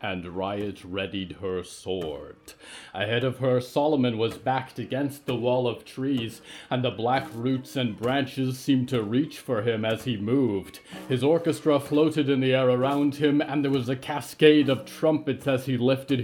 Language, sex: English, male